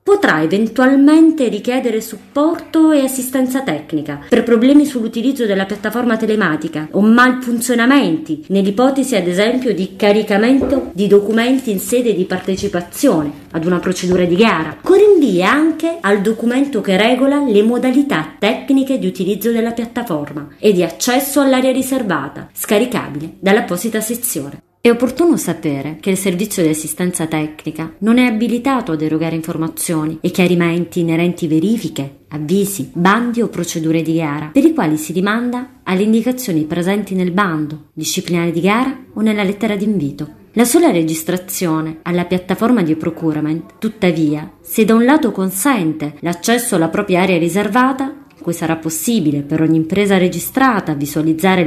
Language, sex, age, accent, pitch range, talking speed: Italian, female, 30-49, native, 165-245 Hz, 140 wpm